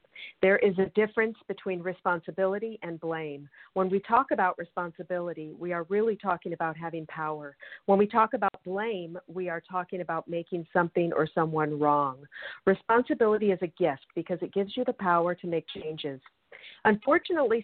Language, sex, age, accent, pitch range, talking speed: English, female, 50-69, American, 170-215 Hz, 165 wpm